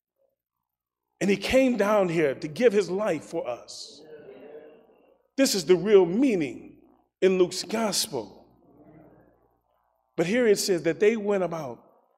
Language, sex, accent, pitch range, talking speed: English, male, American, 175-280 Hz, 135 wpm